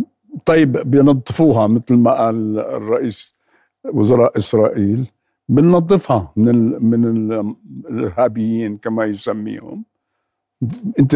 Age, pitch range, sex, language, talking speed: 60-79, 120-160 Hz, male, Arabic, 90 wpm